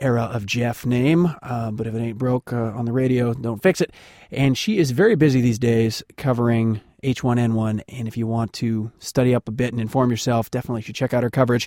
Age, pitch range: 30-49, 115-140 Hz